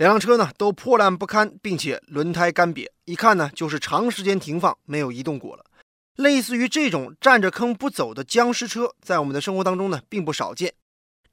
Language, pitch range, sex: Chinese, 175-245 Hz, male